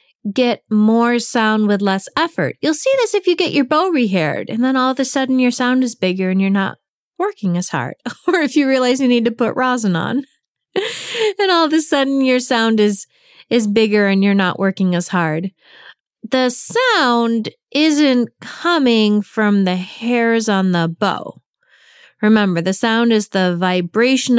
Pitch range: 190-260 Hz